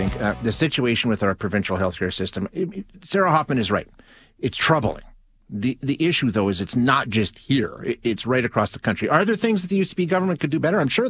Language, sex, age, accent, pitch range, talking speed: English, male, 30-49, American, 105-135 Hz, 240 wpm